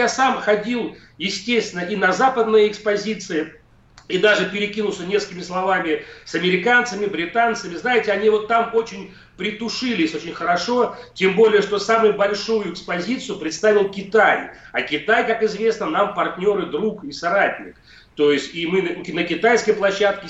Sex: male